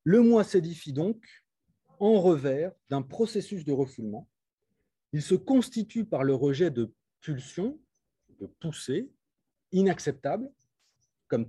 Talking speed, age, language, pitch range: 115 wpm, 40-59, French, 125-195 Hz